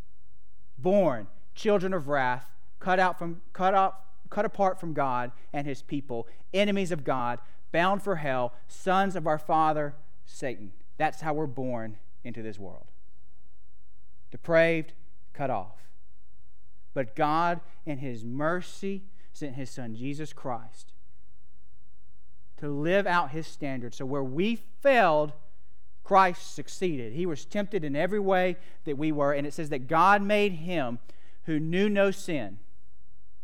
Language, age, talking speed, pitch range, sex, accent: English, 40-59, 140 wpm, 125-180 Hz, male, American